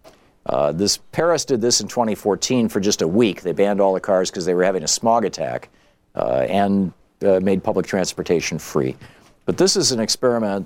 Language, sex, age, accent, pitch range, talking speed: English, male, 50-69, American, 100-130 Hz, 195 wpm